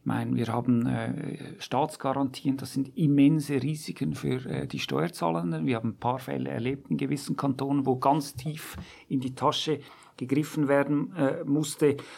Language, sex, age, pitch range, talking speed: German, male, 50-69, 130-155 Hz, 165 wpm